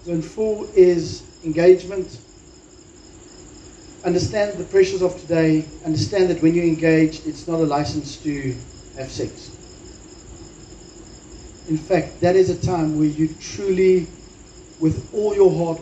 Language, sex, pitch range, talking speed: English, male, 145-175 Hz, 130 wpm